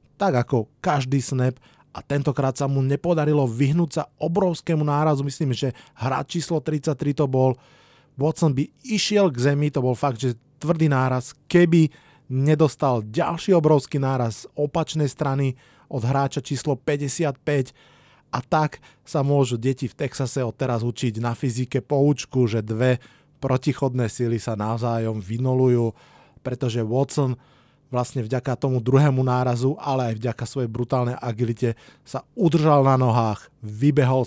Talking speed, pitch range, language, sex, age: 140 wpm, 125-145 Hz, Slovak, male, 20-39